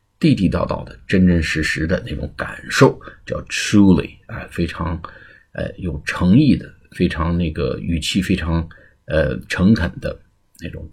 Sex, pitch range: male, 80-90 Hz